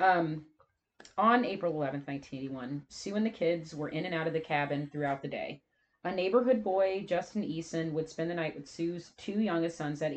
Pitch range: 155-200 Hz